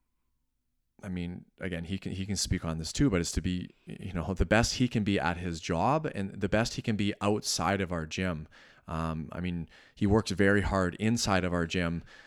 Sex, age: male, 30-49